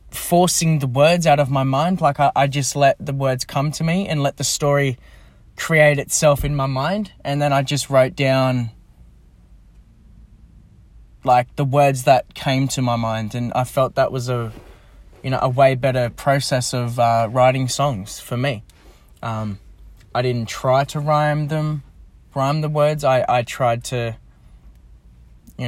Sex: male